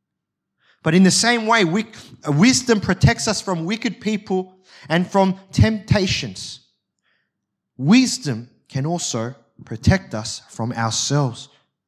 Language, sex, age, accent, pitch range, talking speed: English, male, 30-49, Australian, 125-205 Hz, 105 wpm